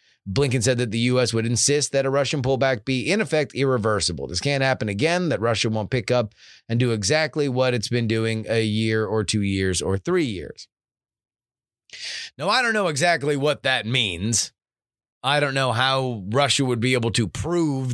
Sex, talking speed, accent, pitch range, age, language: male, 190 wpm, American, 110-140 Hz, 30-49, English